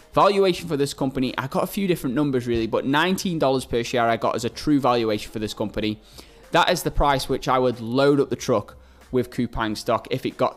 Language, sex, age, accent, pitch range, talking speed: English, male, 20-39, British, 115-140 Hz, 235 wpm